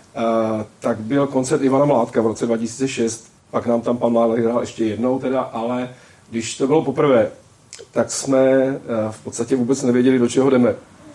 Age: 40-59